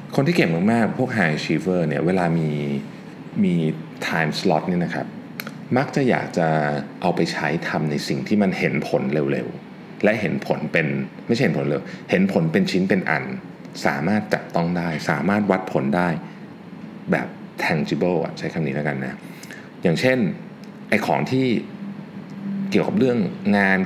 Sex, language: male, Thai